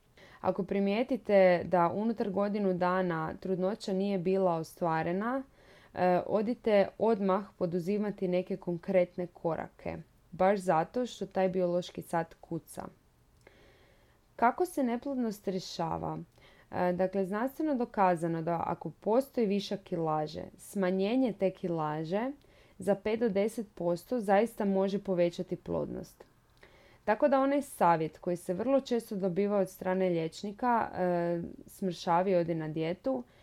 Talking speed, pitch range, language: 110 wpm, 175-210 Hz, Croatian